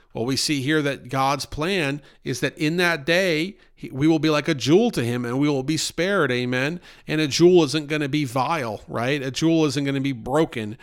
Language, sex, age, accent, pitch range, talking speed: English, male, 40-59, American, 135-160 Hz, 235 wpm